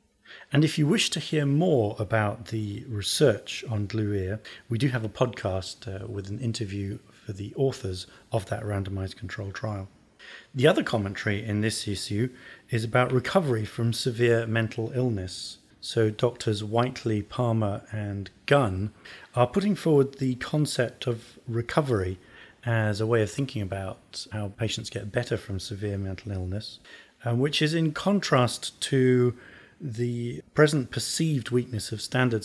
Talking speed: 150 wpm